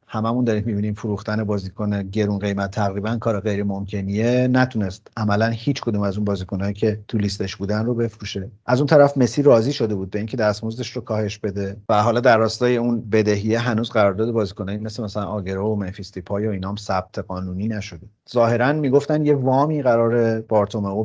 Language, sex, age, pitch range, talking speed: Persian, male, 40-59, 100-125 Hz, 180 wpm